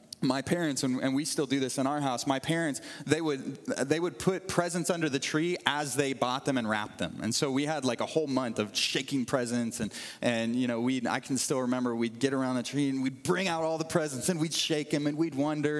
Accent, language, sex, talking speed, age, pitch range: American, English, male, 255 wpm, 30-49, 125-160 Hz